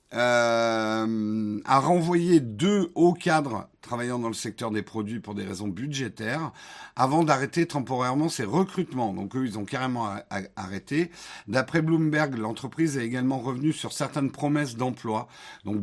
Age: 50-69